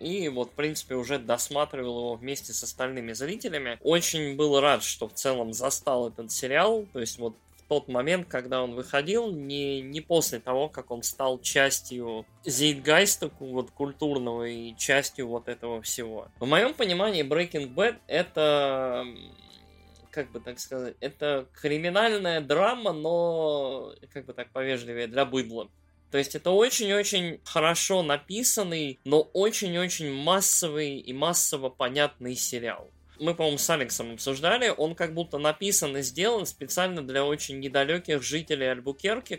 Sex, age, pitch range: male, 20-39, 125-160 Hz